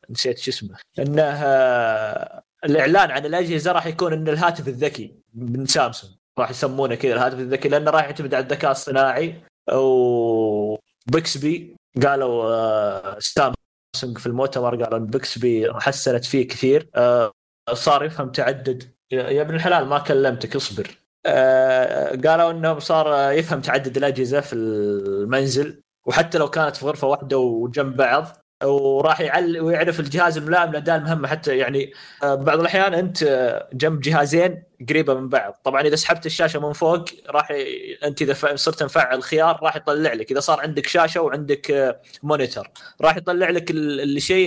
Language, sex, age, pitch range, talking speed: Arabic, male, 20-39, 130-160 Hz, 135 wpm